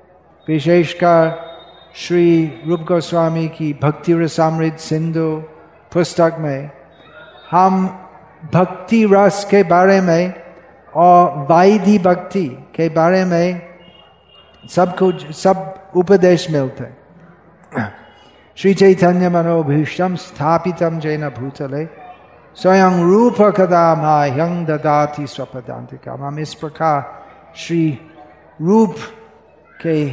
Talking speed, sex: 95 wpm, male